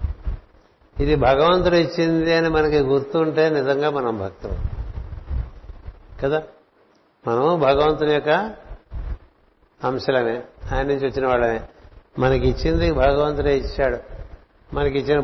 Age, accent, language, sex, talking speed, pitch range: 60-79, native, Telugu, male, 90 wpm, 100-150 Hz